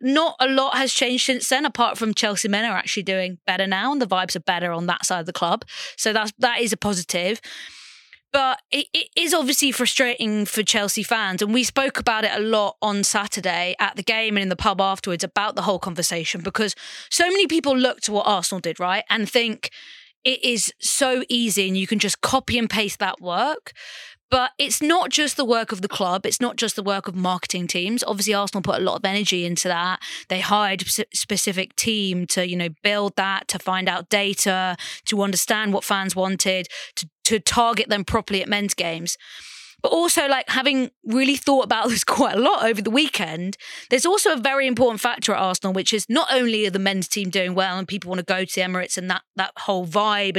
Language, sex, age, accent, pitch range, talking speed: English, female, 20-39, British, 190-240 Hz, 220 wpm